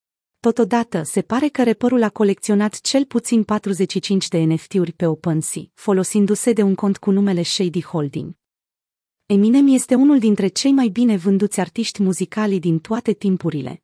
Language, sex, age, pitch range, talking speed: Romanian, female, 30-49, 175-230 Hz, 150 wpm